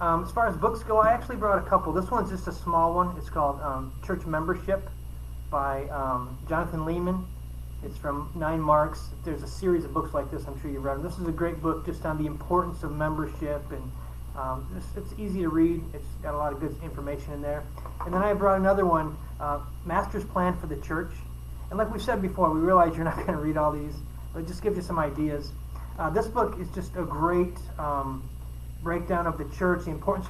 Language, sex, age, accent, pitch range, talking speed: English, male, 30-49, American, 140-175 Hz, 230 wpm